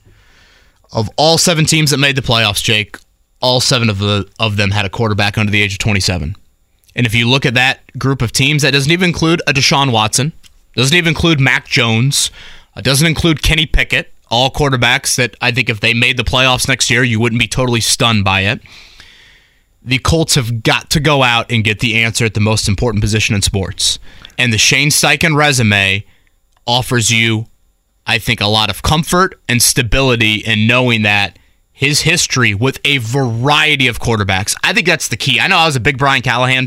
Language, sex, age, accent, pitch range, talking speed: English, male, 20-39, American, 110-140 Hz, 200 wpm